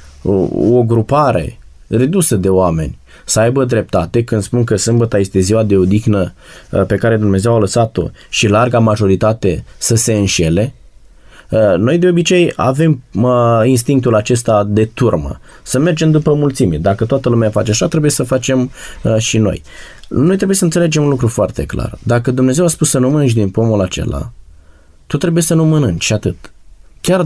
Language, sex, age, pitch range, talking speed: Romanian, male, 20-39, 100-130 Hz, 165 wpm